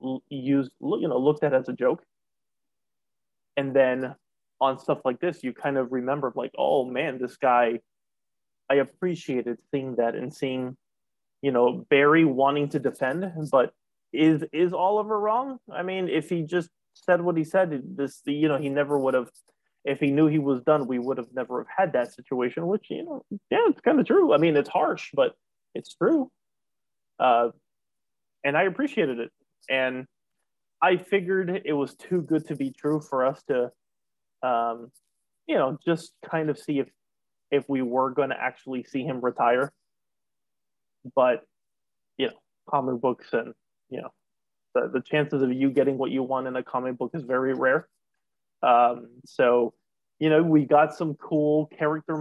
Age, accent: 20-39, American